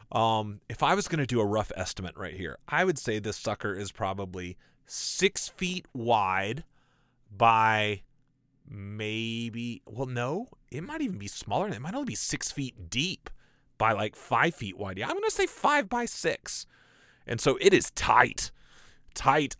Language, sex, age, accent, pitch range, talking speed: English, male, 30-49, American, 95-145 Hz, 175 wpm